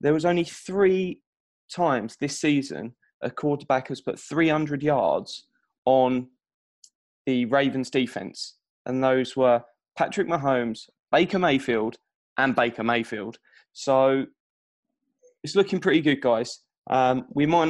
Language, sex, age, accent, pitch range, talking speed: English, male, 20-39, British, 125-150 Hz, 120 wpm